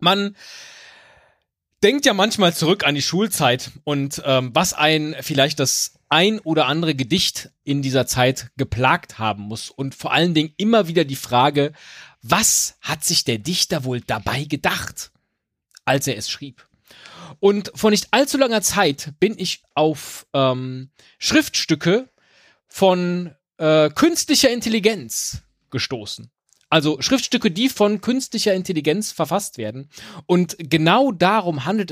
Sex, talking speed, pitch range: male, 135 wpm, 140-210 Hz